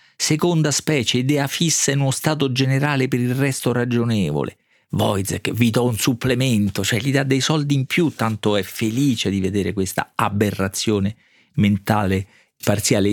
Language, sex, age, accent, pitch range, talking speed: Italian, male, 40-59, native, 100-130 Hz, 150 wpm